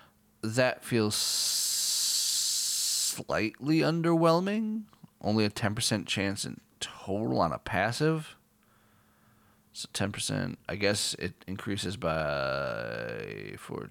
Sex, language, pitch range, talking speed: male, English, 95-115 Hz, 90 wpm